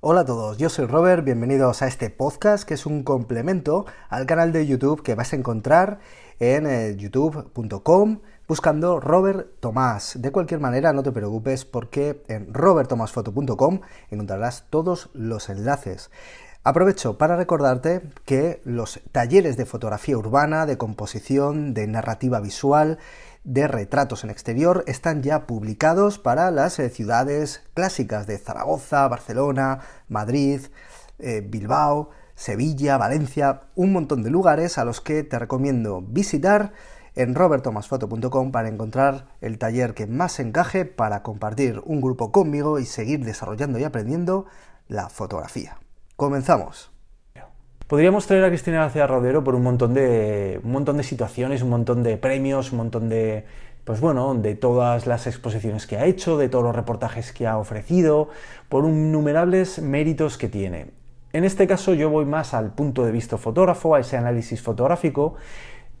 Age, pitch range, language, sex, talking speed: 30-49, 115-155 Hz, Spanish, male, 150 wpm